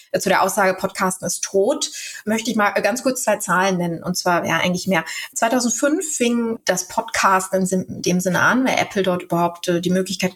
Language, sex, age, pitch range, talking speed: German, female, 20-39, 190-235 Hz, 190 wpm